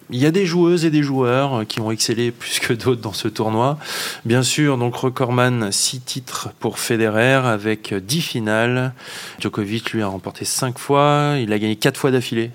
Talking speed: 190 wpm